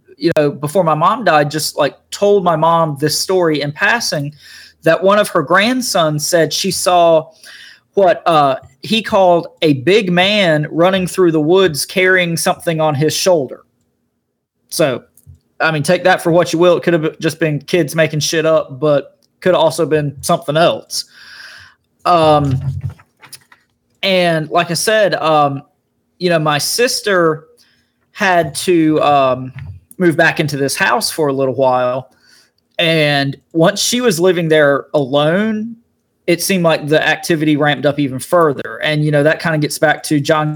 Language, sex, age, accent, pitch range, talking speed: English, male, 30-49, American, 145-175 Hz, 165 wpm